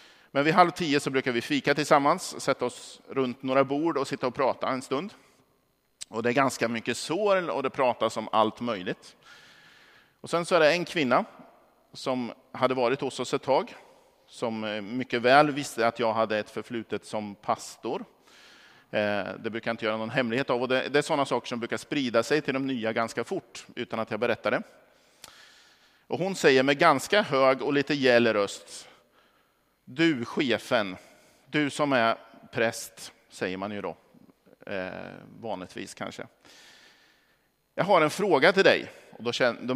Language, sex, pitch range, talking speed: Swedish, male, 115-140 Hz, 170 wpm